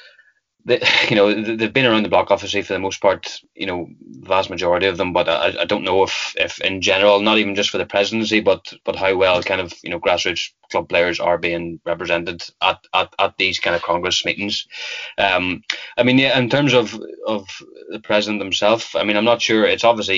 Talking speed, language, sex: 220 wpm, English, male